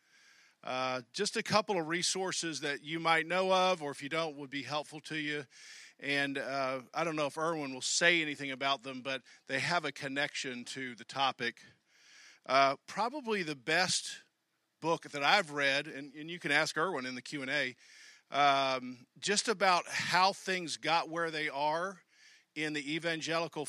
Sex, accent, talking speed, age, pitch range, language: male, American, 175 wpm, 50-69, 135-165 Hz, English